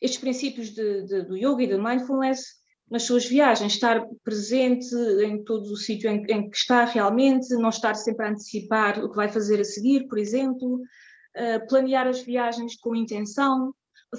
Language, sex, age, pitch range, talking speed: Portuguese, female, 20-39, 220-250 Hz, 170 wpm